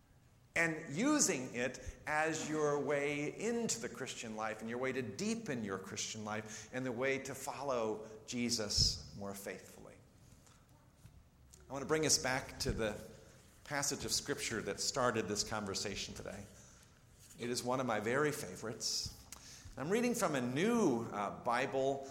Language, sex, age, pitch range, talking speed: English, male, 50-69, 110-145 Hz, 150 wpm